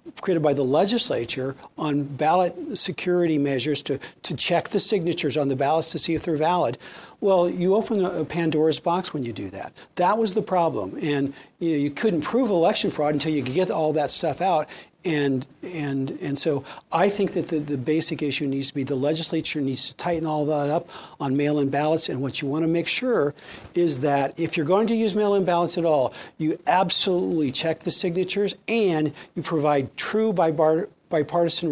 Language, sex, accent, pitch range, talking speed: English, male, American, 140-175 Hz, 195 wpm